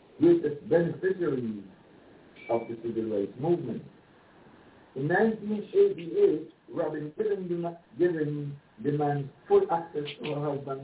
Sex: male